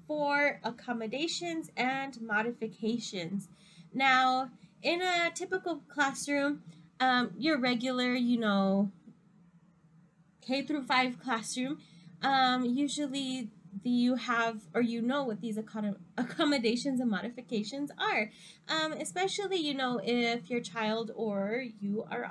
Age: 20-39